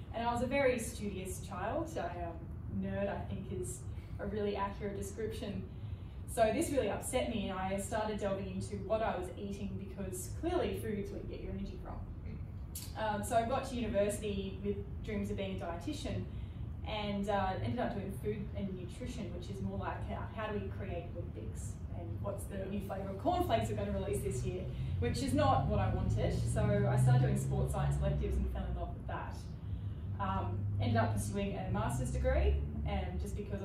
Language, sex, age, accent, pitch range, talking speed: English, female, 10-29, Australian, 90-105 Hz, 205 wpm